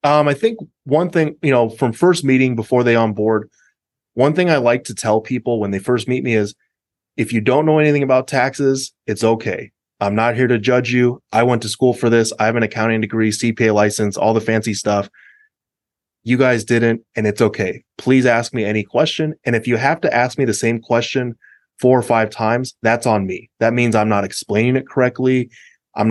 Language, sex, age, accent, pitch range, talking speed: English, male, 20-39, American, 105-125 Hz, 220 wpm